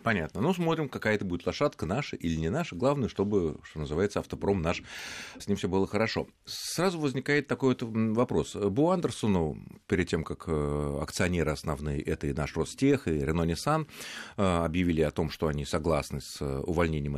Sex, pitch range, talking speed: male, 90-145 Hz, 170 wpm